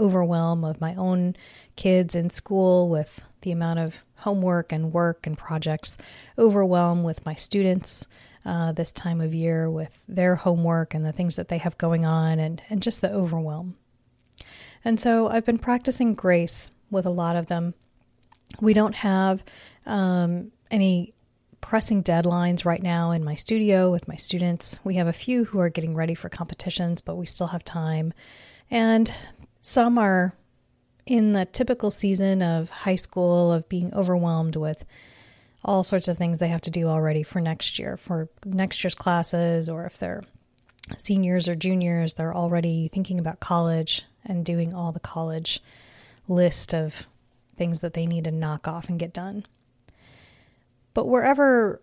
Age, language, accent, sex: 30-49, English, American, female